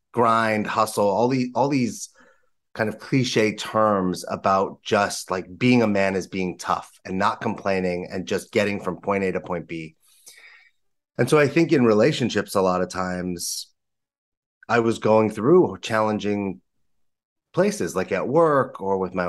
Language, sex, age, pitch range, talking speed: English, male, 30-49, 95-125 Hz, 165 wpm